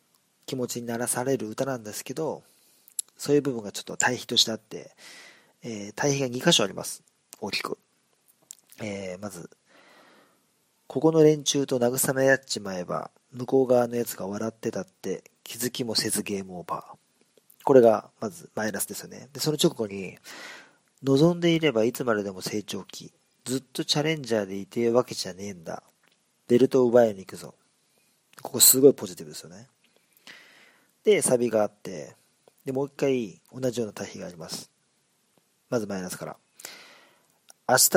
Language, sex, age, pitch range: Japanese, male, 40-59, 110-135 Hz